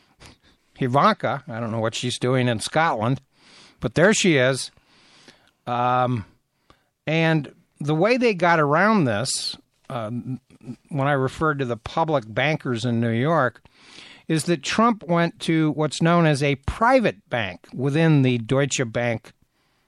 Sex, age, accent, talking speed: male, 60-79, American, 140 wpm